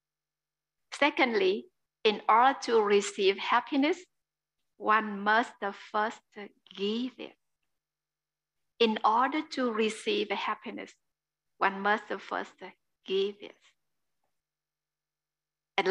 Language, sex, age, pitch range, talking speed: English, female, 60-79, 195-245 Hz, 85 wpm